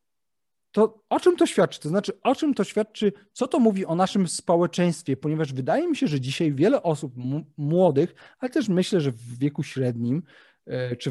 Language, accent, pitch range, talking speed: Polish, native, 140-190 Hz, 185 wpm